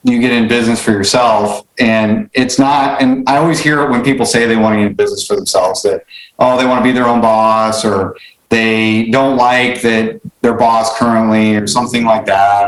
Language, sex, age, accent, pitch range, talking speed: English, male, 40-59, American, 115-145 Hz, 220 wpm